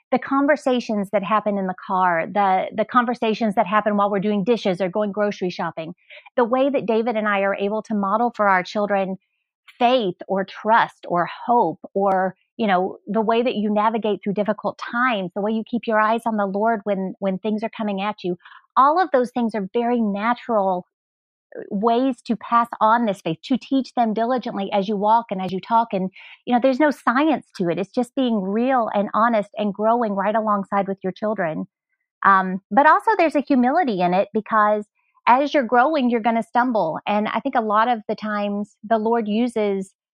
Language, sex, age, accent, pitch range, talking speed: English, female, 40-59, American, 200-240 Hz, 205 wpm